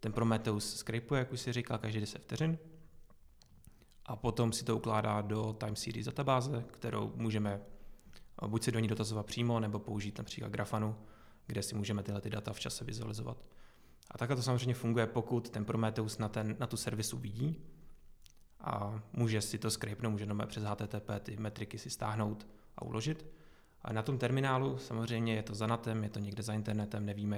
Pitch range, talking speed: 105-120 Hz, 180 wpm